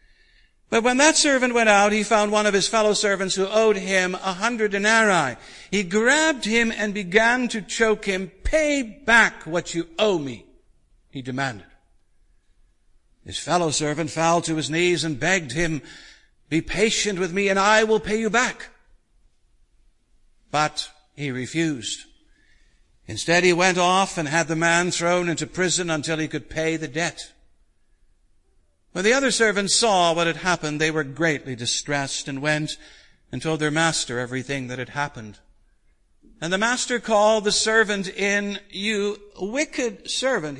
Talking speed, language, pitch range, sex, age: 160 wpm, English, 150-210 Hz, male, 60-79